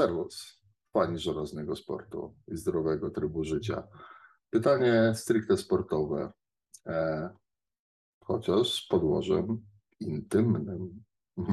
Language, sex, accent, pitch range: Polish, male, native, 80-110 Hz